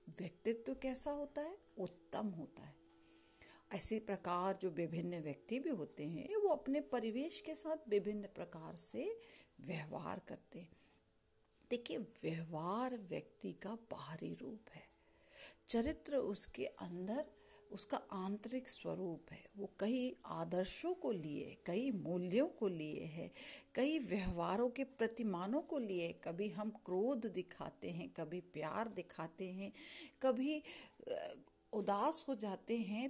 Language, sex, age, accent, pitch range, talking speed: Hindi, female, 50-69, native, 185-285 Hz, 130 wpm